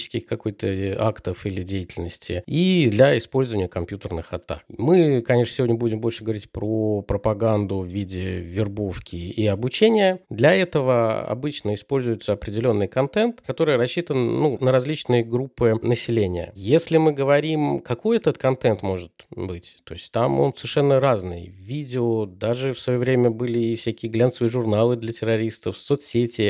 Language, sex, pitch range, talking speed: Russian, male, 110-135 Hz, 140 wpm